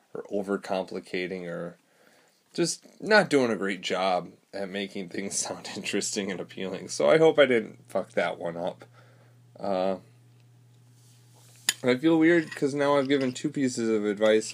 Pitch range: 105-130 Hz